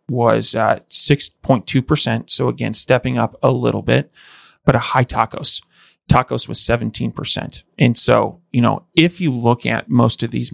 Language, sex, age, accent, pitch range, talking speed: English, male, 30-49, American, 115-130 Hz, 160 wpm